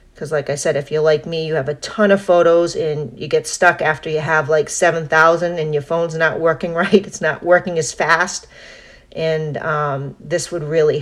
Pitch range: 145-170 Hz